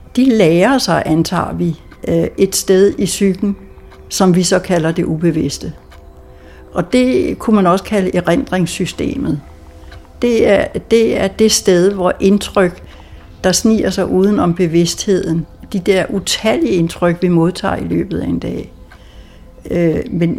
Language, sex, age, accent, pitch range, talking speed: Danish, female, 60-79, native, 165-205 Hz, 140 wpm